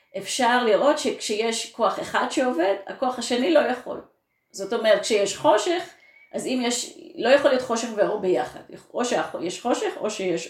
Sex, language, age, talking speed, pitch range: female, Hebrew, 30-49, 160 wpm, 190-255 Hz